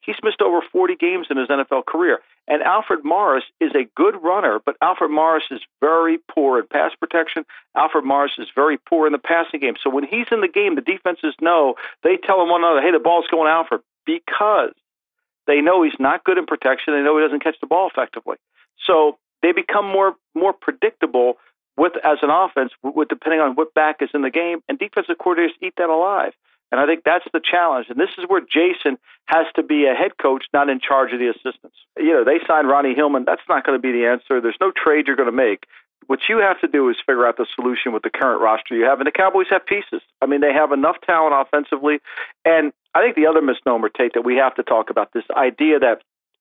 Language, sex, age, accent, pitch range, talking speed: English, male, 50-69, American, 135-180 Hz, 235 wpm